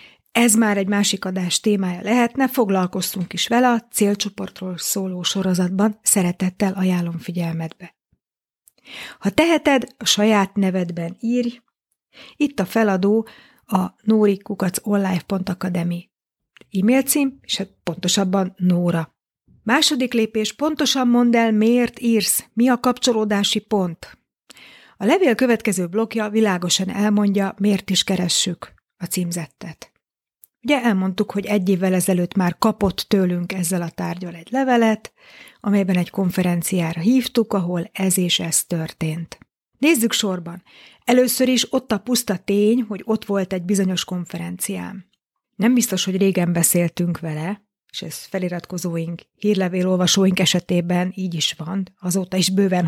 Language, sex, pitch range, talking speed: Hungarian, female, 180-225 Hz, 125 wpm